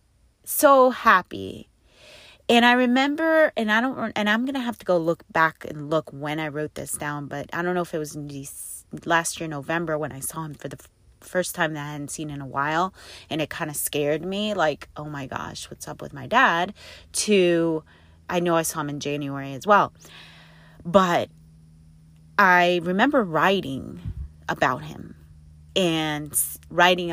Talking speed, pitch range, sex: 185 wpm, 145-190 Hz, female